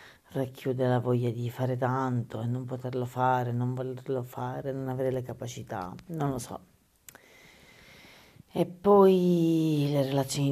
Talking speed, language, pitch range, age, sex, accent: 135 wpm, Italian, 125-140 Hz, 40-59, female, native